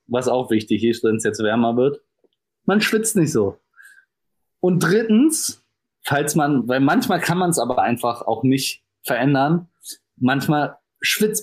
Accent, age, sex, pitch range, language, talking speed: German, 20-39, male, 150-195 Hz, German, 160 wpm